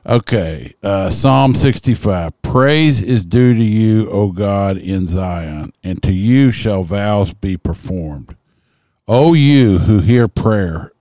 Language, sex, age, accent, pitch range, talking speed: English, male, 50-69, American, 90-120 Hz, 135 wpm